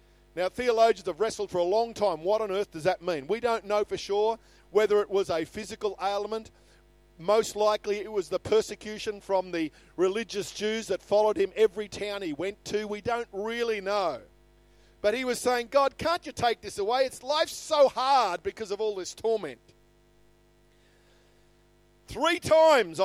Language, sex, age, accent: English, male, 50-69, Australian